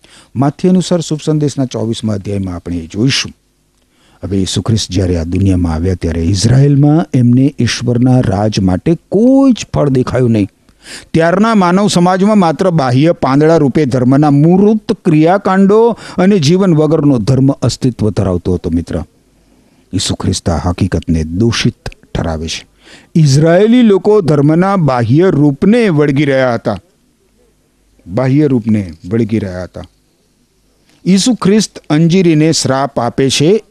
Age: 50-69